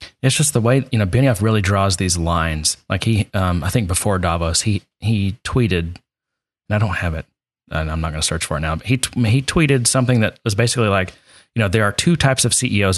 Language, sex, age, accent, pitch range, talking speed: English, male, 30-49, American, 95-130 Hz, 240 wpm